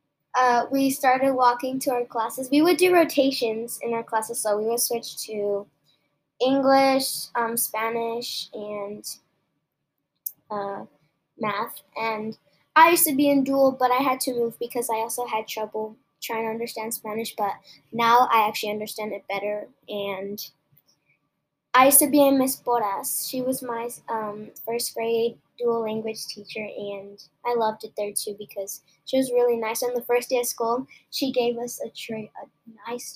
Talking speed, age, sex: 170 wpm, 10-29, female